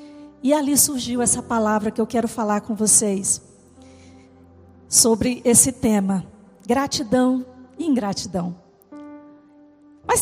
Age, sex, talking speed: 40-59, female, 105 wpm